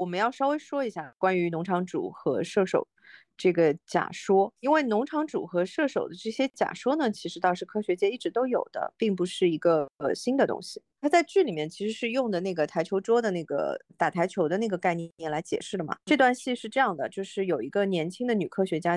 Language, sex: Chinese, female